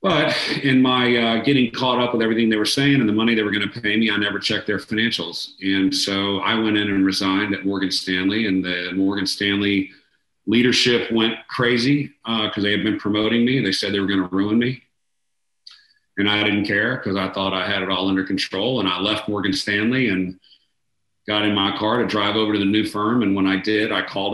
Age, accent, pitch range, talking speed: 40-59, American, 95-110 Hz, 235 wpm